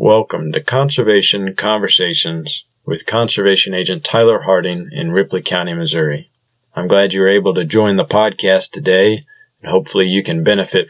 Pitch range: 95-120 Hz